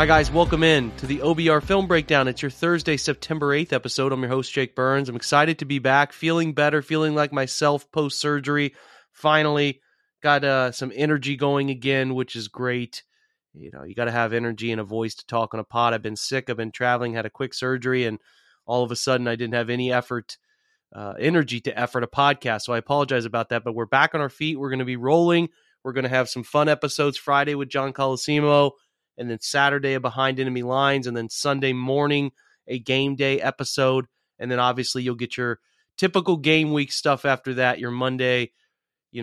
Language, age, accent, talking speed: English, 30-49, American, 210 wpm